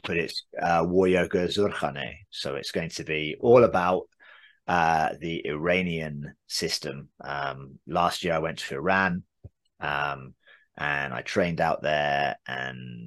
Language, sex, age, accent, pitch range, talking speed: English, male, 30-49, British, 80-95 Hz, 140 wpm